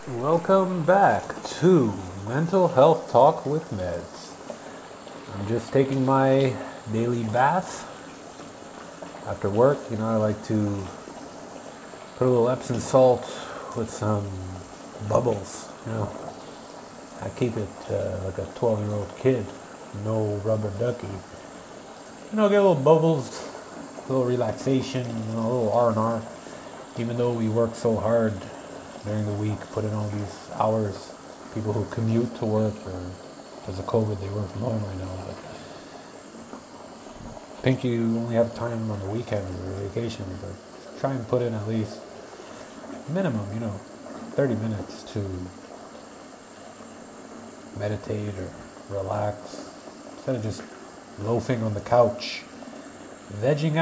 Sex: male